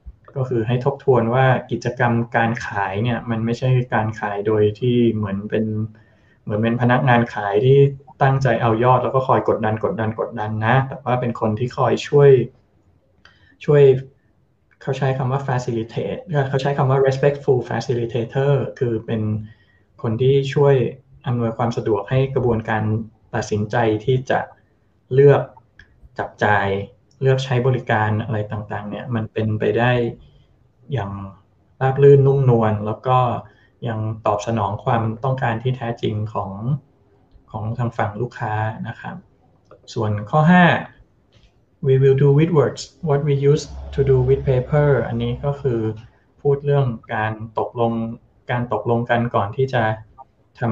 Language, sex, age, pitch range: Thai, male, 20-39, 110-130 Hz